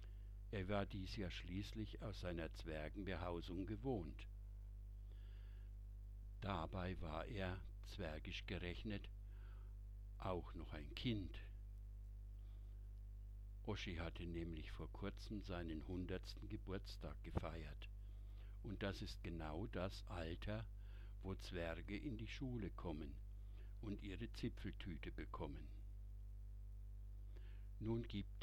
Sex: male